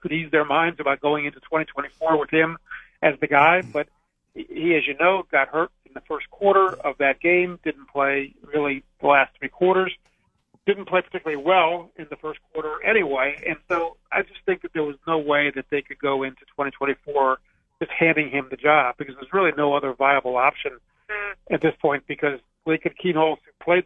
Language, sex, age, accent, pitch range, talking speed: English, male, 50-69, American, 145-175 Hz, 200 wpm